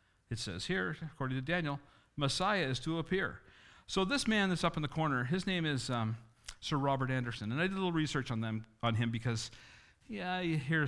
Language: English